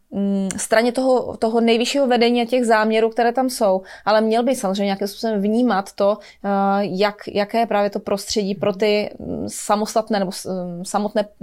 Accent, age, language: native, 20-39, Czech